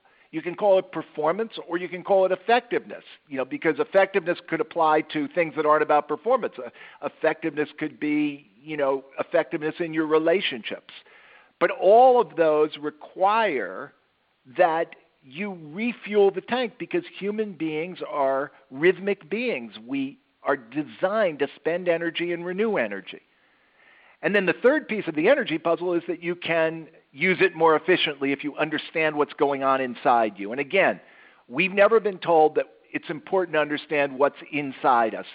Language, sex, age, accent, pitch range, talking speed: English, male, 50-69, American, 150-190 Hz, 165 wpm